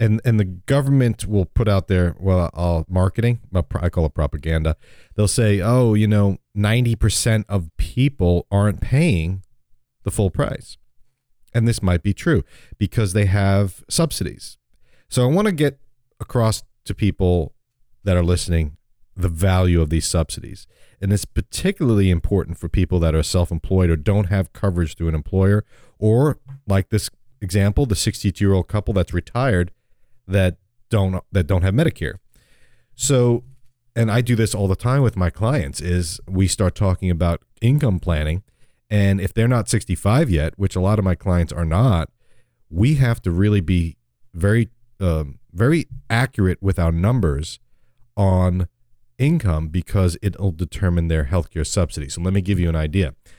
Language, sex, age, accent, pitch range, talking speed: English, male, 40-59, American, 90-120 Hz, 160 wpm